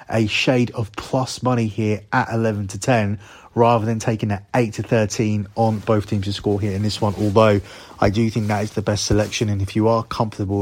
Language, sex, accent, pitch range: English, male, British, 105-115 Hz